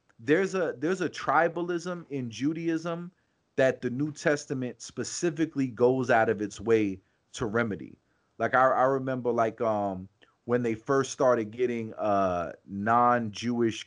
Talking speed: 140 wpm